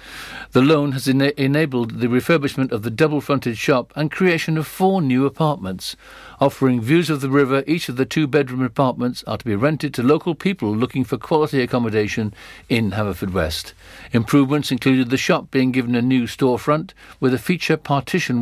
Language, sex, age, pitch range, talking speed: English, male, 60-79, 120-150 Hz, 175 wpm